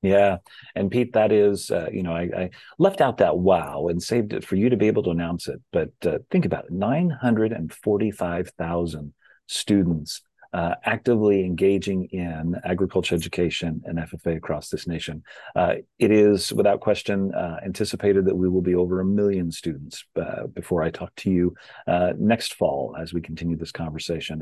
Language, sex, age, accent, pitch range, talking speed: English, male, 40-59, American, 85-100 Hz, 175 wpm